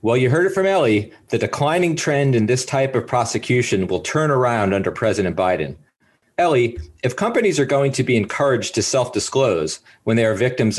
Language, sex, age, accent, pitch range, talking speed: English, male, 40-59, American, 105-135 Hz, 190 wpm